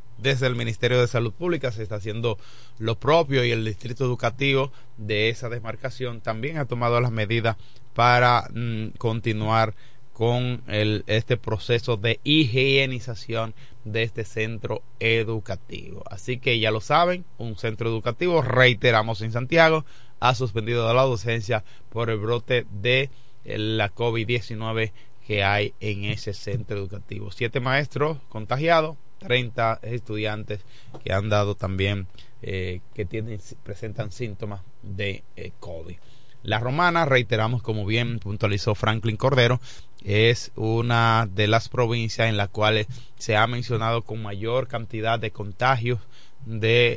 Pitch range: 110-125 Hz